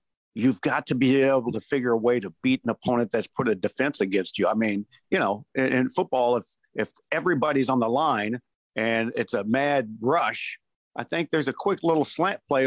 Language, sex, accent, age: English, male, American, 50-69